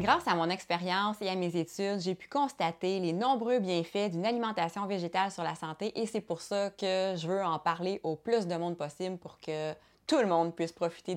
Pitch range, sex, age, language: 175-220 Hz, female, 20-39, French